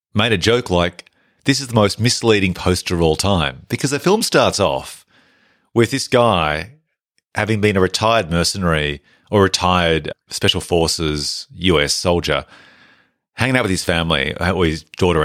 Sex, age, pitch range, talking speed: male, 30-49, 85-105 Hz, 155 wpm